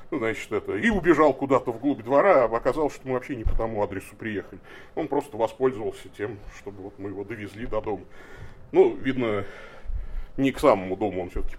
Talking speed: 190 wpm